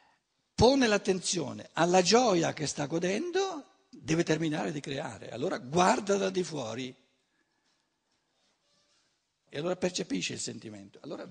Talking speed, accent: 115 wpm, native